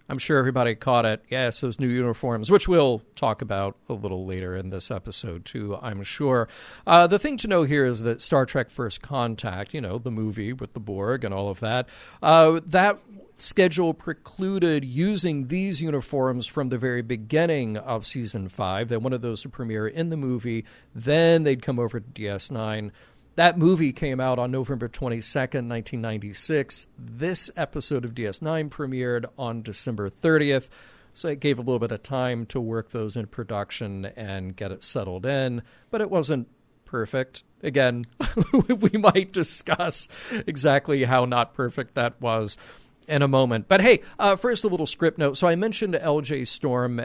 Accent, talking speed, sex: American, 175 wpm, male